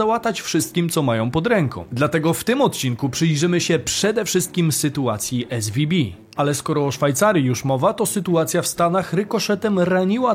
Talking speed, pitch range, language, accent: 160 wpm, 140-195 Hz, Polish, native